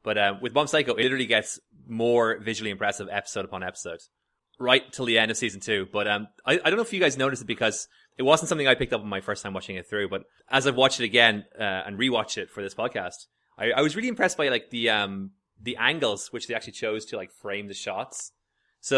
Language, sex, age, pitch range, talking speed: English, male, 20-39, 100-130 Hz, 255 wpm